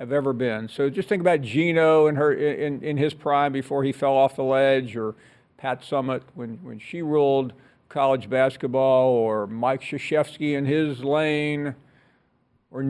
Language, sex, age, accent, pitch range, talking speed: English, male, 50-69, American, 130-170 Hz, 165 wpm